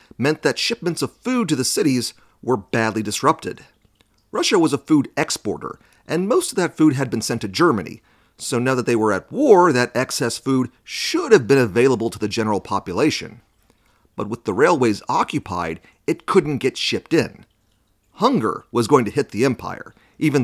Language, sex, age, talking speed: English, male, 40-59, 180 wpm